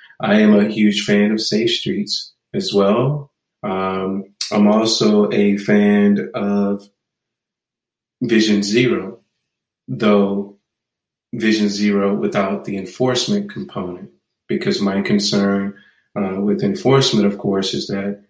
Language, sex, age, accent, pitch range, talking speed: English, male, 30-49, American, 100-110 Hz, 115 wpm